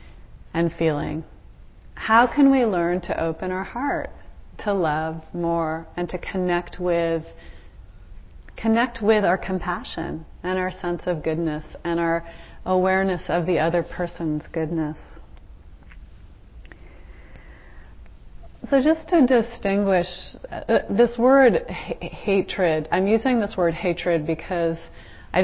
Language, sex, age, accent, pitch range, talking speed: English, female, 30-49, American, 160-195 Hz, 120 wpm